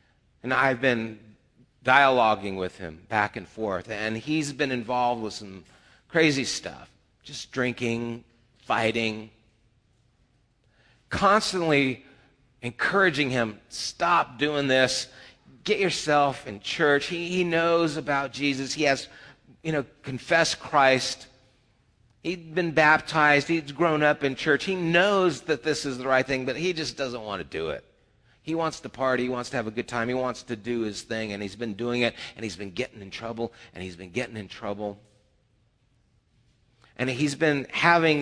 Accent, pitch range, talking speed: American, 115-140 Hz, 160 wpm